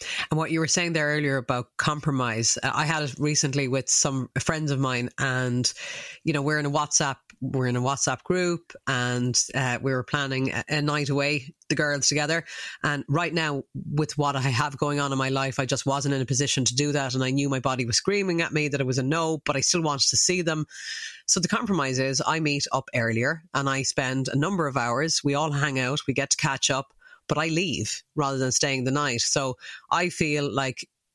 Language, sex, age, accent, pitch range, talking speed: English, female, 30-49, Irish, 135-160 Hz, 230 wpm